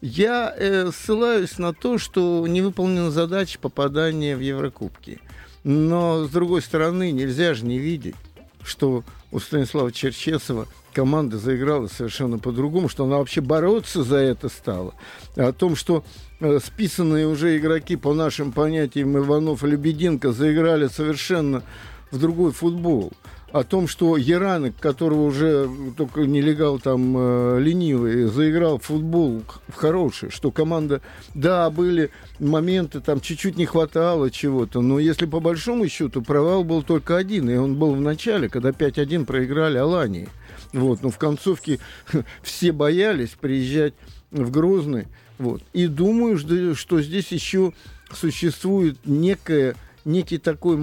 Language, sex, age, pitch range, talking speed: Russian, male, 50-69, 135-170 Hz, 140 wpm